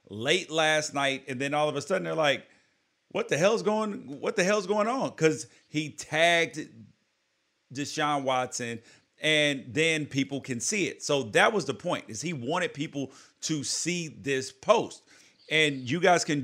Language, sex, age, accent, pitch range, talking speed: English, male, 40-59, American, 120-155 Hz, 175 wpm